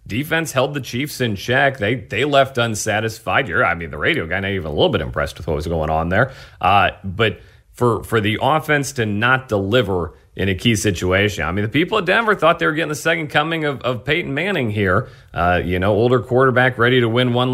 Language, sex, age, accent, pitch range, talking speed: English, male, 40-59, American, 100-135 Hz, 235 wpm